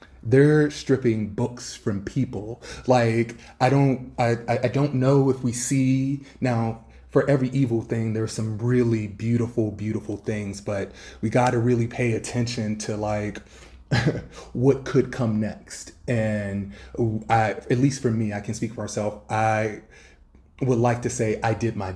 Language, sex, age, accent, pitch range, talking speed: English, male, 30-49, American, 105-120 Hz, 160 wpm